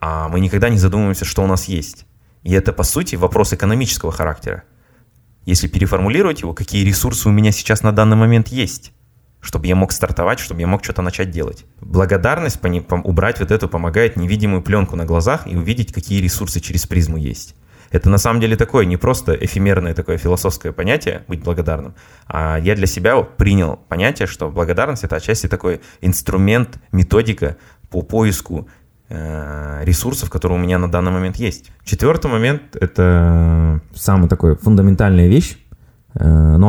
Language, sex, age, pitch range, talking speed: Russian, male, 20-39, 85-105 Hz, 160 wpm